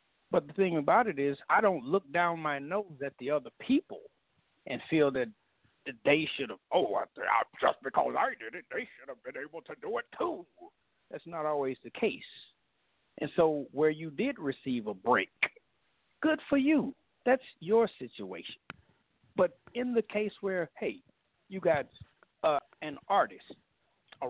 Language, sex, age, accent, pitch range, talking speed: English, male, 50-69, American, 145-225 Hz, 175 wpm